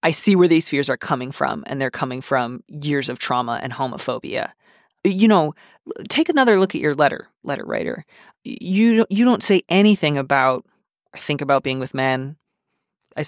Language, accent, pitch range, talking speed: English, American, 135-165 Hz, 180 wpm